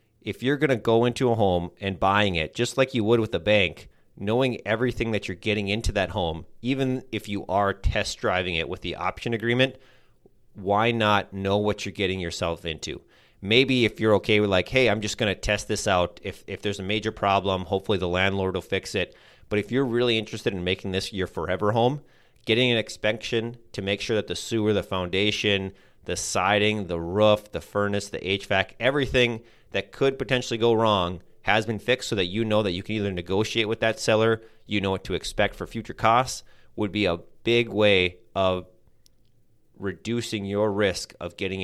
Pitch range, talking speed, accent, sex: 95-115 Hz, 205 wpm, American, male